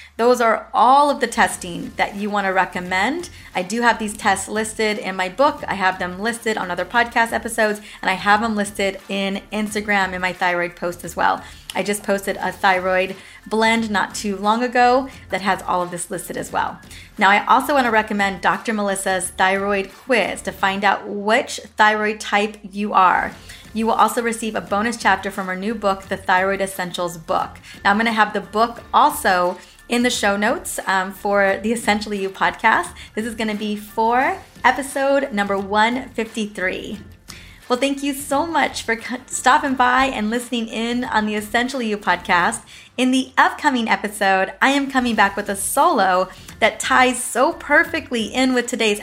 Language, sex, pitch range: English, female, 195-245 Hz